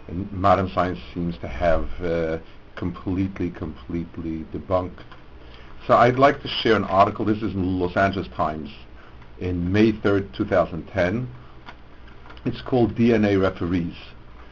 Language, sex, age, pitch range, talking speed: English, male, 60-79, 85-110 Hz, 125 wpm